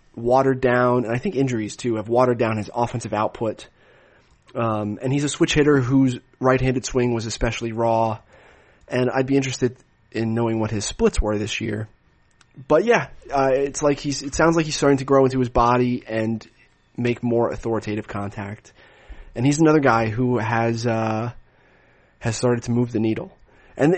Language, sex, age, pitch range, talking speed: English, male, 30-49, 115-150 Hz, 180 wpm